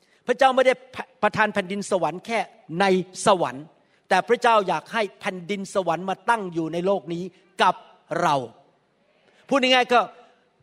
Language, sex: Thai, male